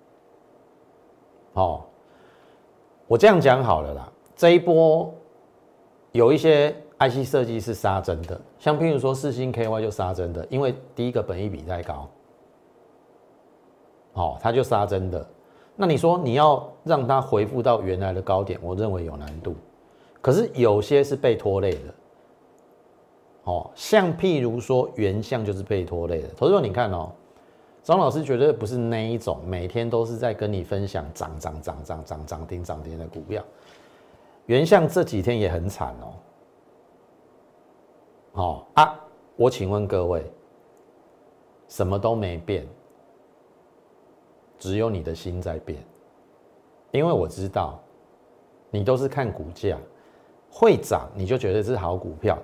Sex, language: male, Chinese